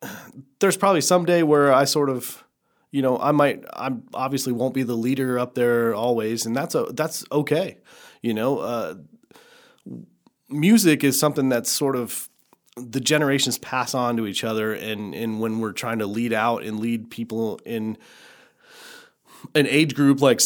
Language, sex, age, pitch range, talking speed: English, male, 30-49, 105-140 Hz, 170 wpm